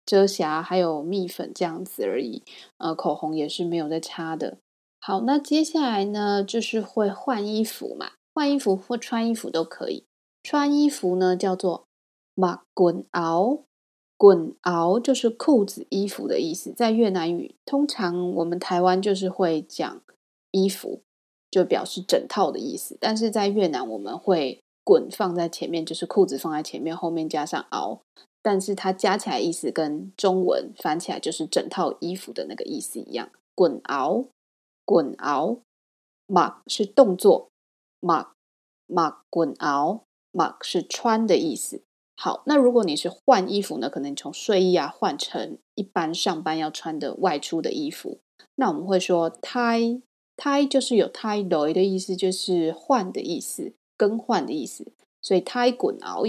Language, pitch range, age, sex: Chinese, 175-235 Hz, 20-39, female